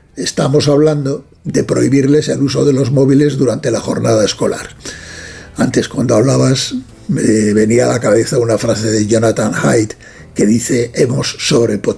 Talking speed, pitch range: 145 wpm, 115-145 Hz